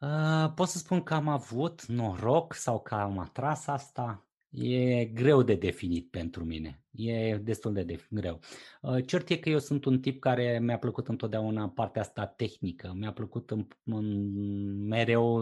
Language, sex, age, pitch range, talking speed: Romanian, male, 20-39, 105-130 Hz, 165 wpm